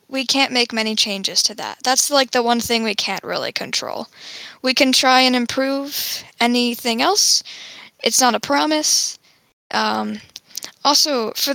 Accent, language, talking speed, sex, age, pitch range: American, English, 155 wpm, female, 10-29, 225-270 Hz